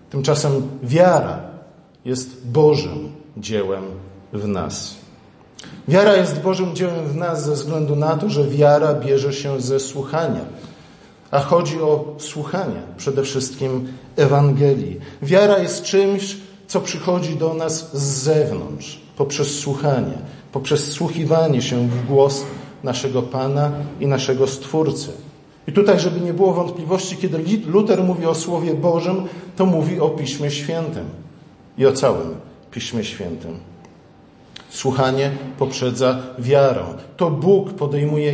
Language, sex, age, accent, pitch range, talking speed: Polish, male, 50-69, native, 140-175 Hz, 125 wpm